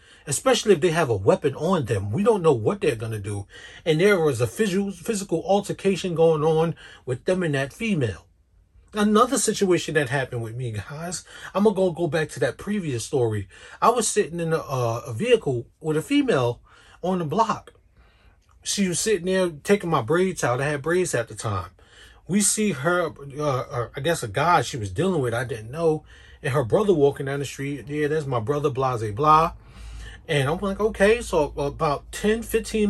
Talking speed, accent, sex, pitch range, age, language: 200 wpm, American, male, 125-200 Hz, 30-49, English